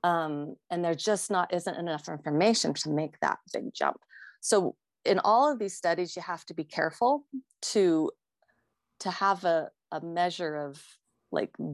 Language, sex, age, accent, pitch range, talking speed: English, female, 30-49, American, 165-215 Hz, 165 wpm